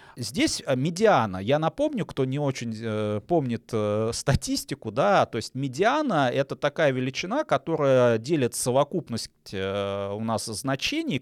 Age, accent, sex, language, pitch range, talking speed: 30-49, native, male, Russian, 115-175 Hz, 120 wpm